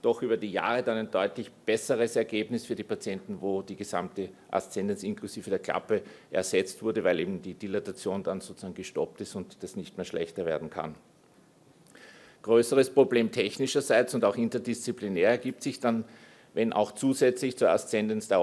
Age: 50-69